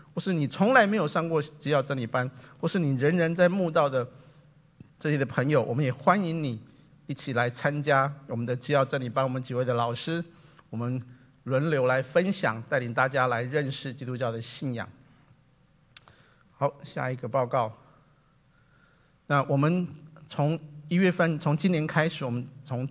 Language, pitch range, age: Chinese, 130-160 Hz, 50-69